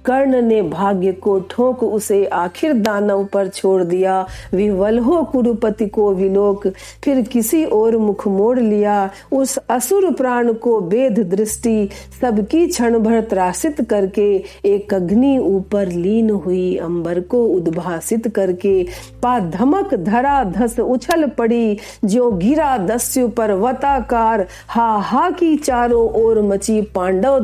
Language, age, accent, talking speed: Hindi, 50-69, native, 120 wpm